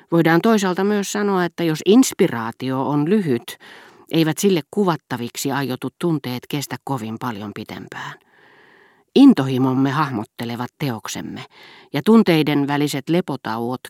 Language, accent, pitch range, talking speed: Finnish, native, 130-180 Hz, 110 wpm